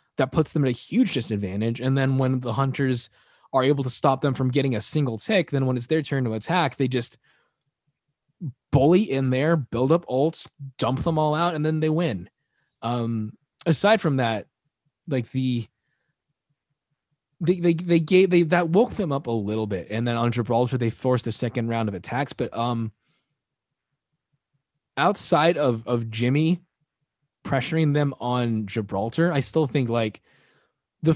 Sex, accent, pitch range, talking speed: male, American, 115-150 Hz, 170 wpm